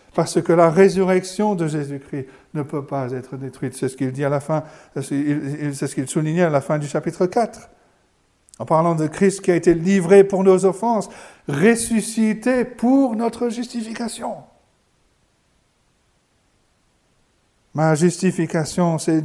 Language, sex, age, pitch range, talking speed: French, male, 50-69, 165-225 Hz, 145 wpm